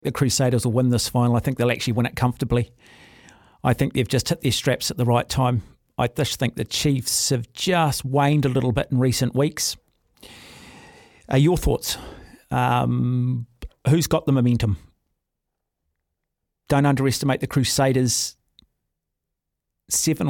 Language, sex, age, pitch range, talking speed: English, male, 40-59, 115-140 Hz, 150 wpm